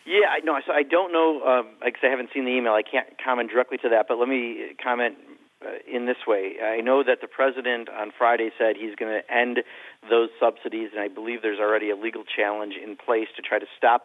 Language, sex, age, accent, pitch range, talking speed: English, male, 50-69, American, 115-135 Hz, 220 wpm